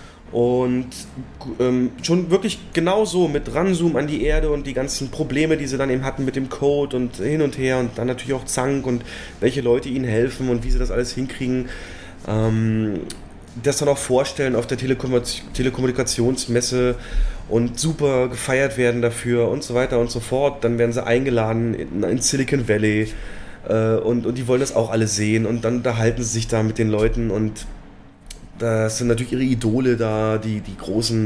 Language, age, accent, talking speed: German, 20-39, German, 185 wpm